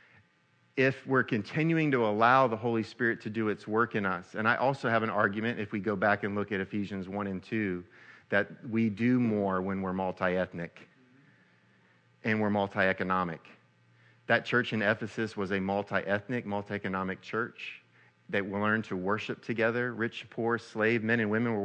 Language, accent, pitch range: English, American, 95-110 Hz